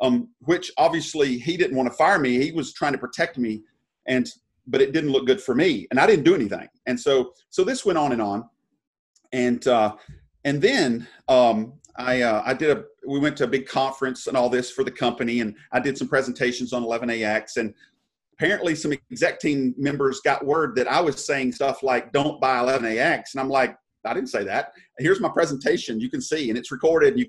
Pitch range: 125-155 Hz